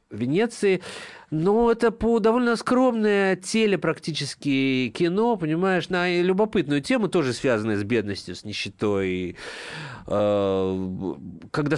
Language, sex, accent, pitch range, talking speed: Russian, male, native, 110-165 Hz, 100 wpm